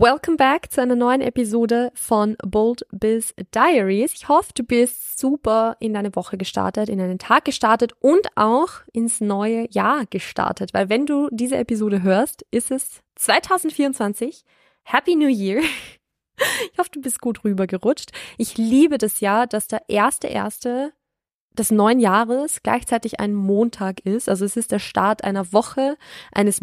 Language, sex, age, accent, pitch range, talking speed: German, female, 20-39, German, 200-250 Hz, 160 wpm